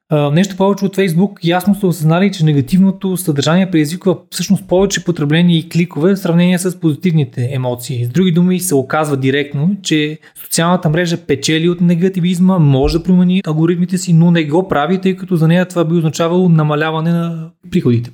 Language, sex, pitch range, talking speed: Bulgarian, male, 145-180 Hz, 175 wpm